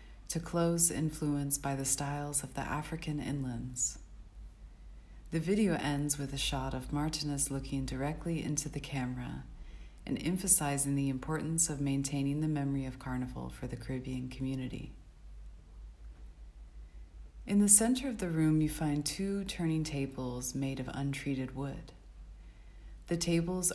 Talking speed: 135 wpm